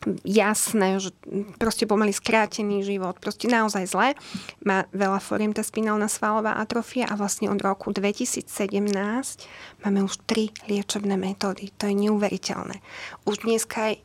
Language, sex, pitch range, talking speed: Slovak, female, 195-220 Hz, 130 wpm